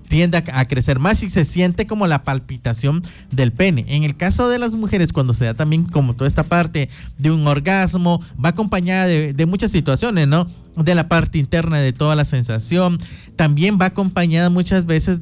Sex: male